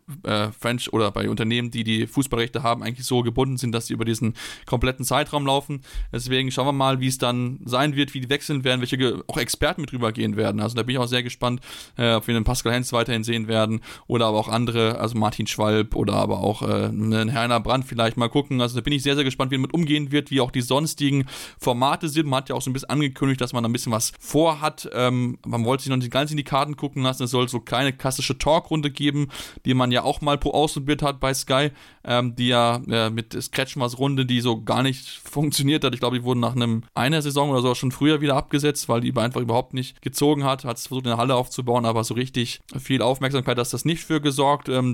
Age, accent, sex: 20-39, German, male